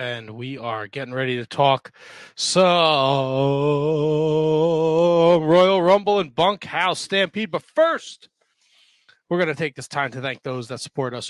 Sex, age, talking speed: male, 30-49, 145 wpm